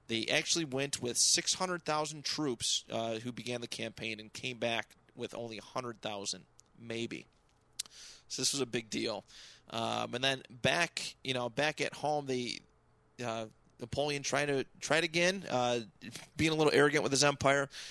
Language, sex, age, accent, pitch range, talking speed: English, male, 30-49, American, 115-145 Hz, 180 wpm